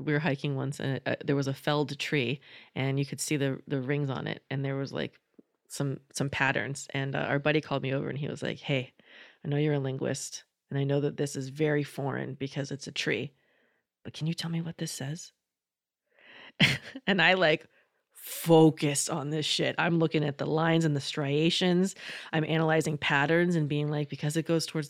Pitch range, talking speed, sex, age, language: 145-170 Hz, 210 wpm, female, 20-39, English